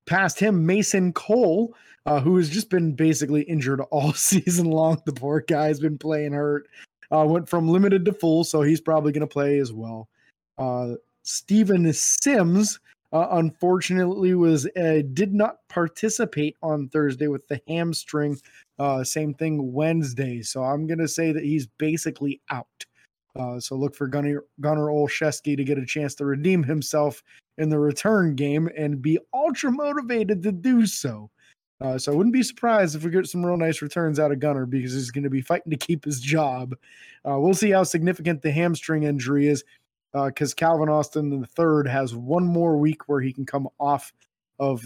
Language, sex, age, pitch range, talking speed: English, male, 20-39, 135-170 Hz, 180 wpm